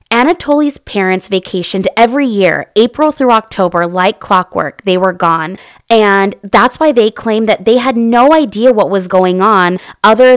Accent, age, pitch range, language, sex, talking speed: American, 20-39, 185-240 Hz, English, female, 160 wpm